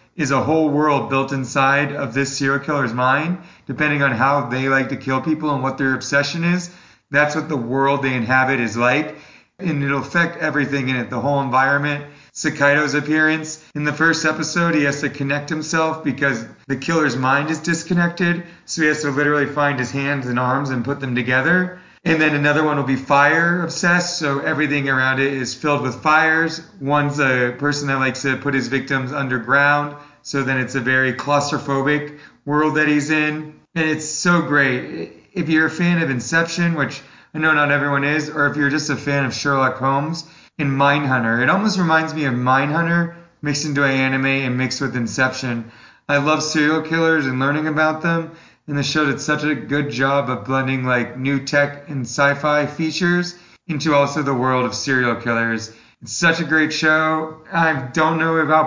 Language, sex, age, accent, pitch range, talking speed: English, male, 30-49, American, 135-155 Hz, 190 wpm